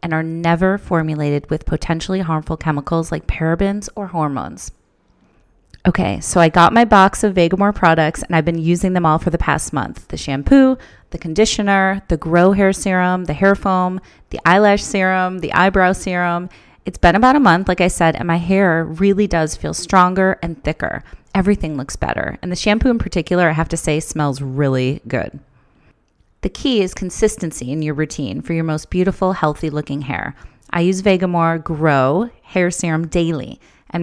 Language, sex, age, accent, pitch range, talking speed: English, female, 30-49, American, 160-190 Hz, 180 wpm